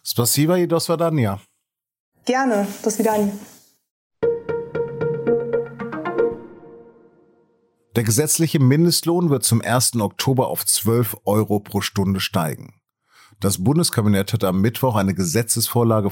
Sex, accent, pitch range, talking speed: male, German, 105-130 Hz, 80 wpm